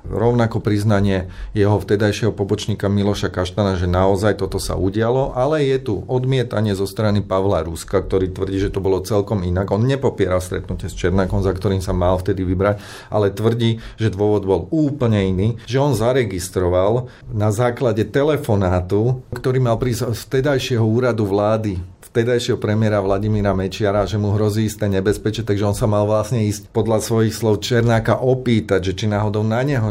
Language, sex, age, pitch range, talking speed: Slovak, male, 40-59, 100-115 Hz, 165 wpm